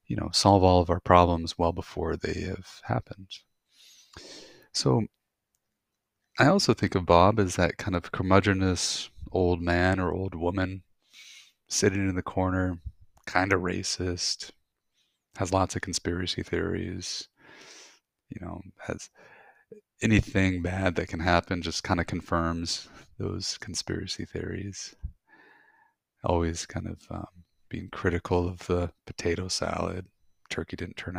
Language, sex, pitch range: English, male, 85-100 Hz